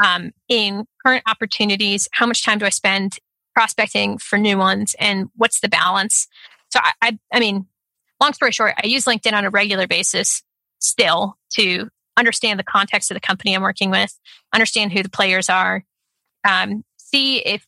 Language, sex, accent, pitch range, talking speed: English, female, American, 195-230 Hz, 175 wpm